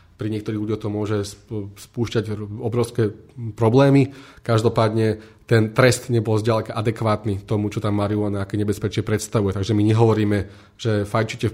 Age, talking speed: 30-49, 140 wpm